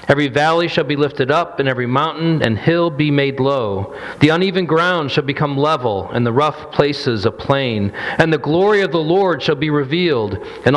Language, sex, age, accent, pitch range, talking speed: English, male, 40-59, American, 125-170 Hz, 200 wpm